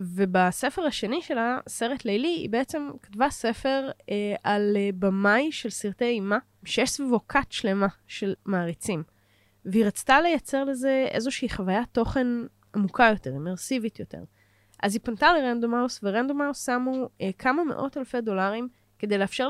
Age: 10-29